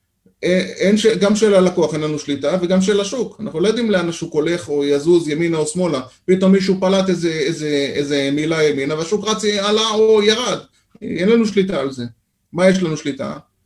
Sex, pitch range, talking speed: male, 155-200 Hz, 190 wpm